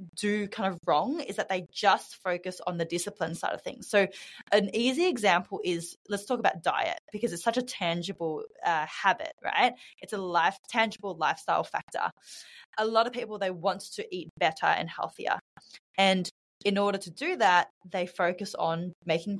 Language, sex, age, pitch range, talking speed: English, female, 20-39, 180-225 Hz, 185 wpm